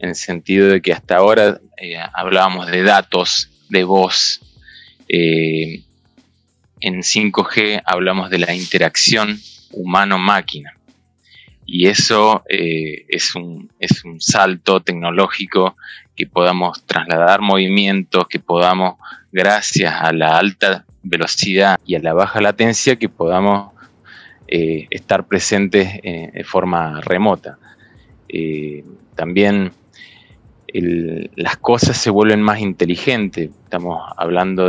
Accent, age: Argentinian, 20-39